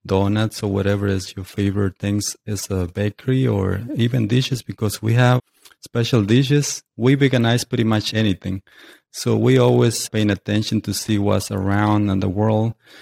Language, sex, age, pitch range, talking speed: English, male, 30-49, 100-115 Hz, 160 wpm